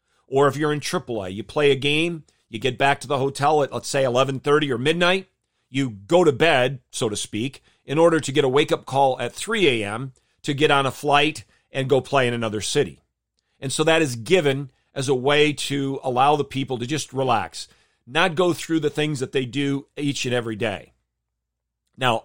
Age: 40-59